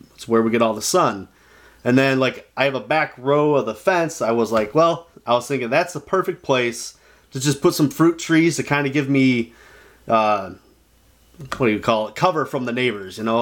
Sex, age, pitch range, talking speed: male, 30-49, 115-150 Hz, 235 wpm